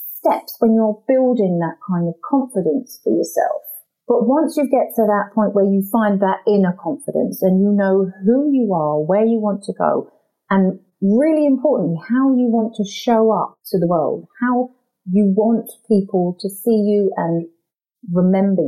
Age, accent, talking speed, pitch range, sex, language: 40-59, British, 175 wpm, 175-230 Hz, female, English